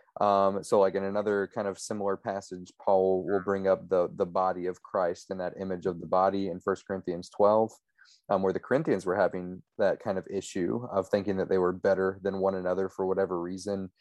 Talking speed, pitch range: 215 wpm, 95-105 Hz